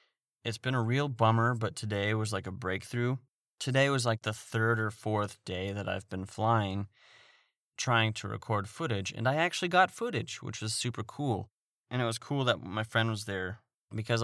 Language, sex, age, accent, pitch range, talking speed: English, male, 30-49, American, 105-125 Hz, 195 wpm